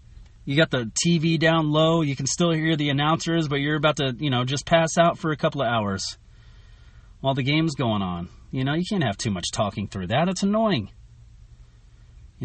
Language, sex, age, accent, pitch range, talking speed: English, male, 30-49, American, 100-155 Hz, 210 wpm